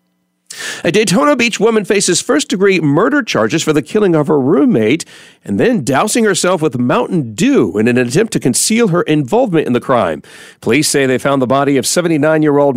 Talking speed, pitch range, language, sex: 185 wpm, 125-175 Hz, English, male